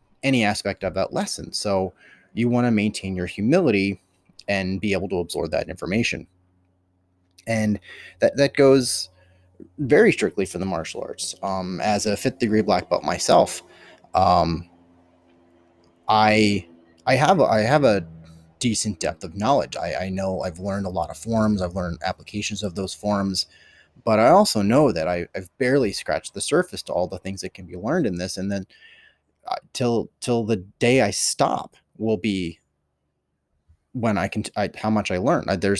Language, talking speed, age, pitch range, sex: English, 170 wpm, 30-49, 90-110 Hz, male